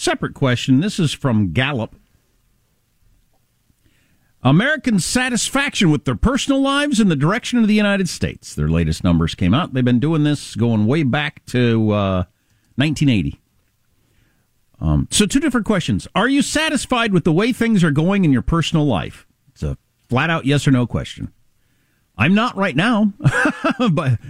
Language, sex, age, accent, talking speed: English, male, 50-69, American, 160 wpm